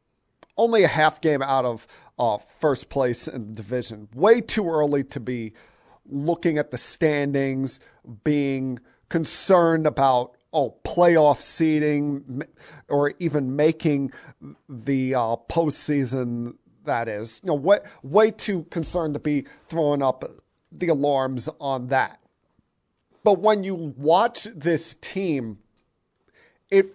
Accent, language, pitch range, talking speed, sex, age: American, English, 135-170 Hz, 125 wpm, male, 40-59